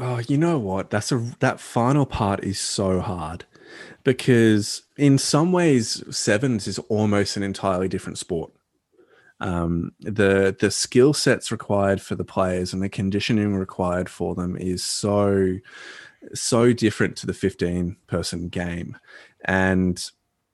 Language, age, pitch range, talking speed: English, 20-39, 95-115 Hz, 140 wpm